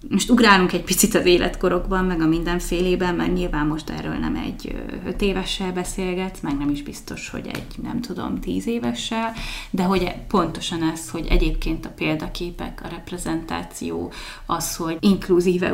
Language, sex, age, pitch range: Hungarian, female, 20-39, 160-185 Hz